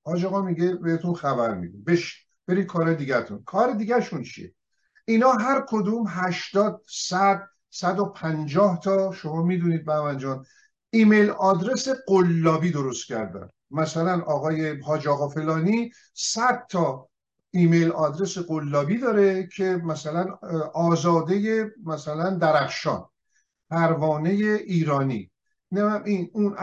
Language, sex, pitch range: Persian, male, 160-200 Hz